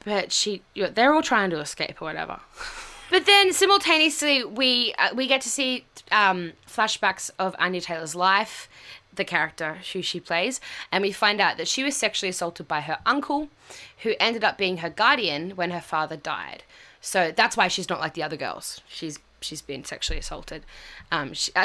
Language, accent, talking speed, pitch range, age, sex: English, Australian, 195 wpm, 170-245 Hz, 10-29, female